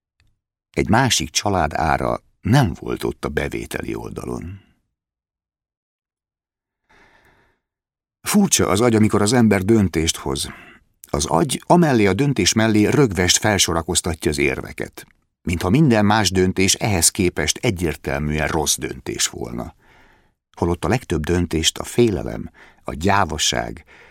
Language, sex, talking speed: Hungarian, male, 115 wpm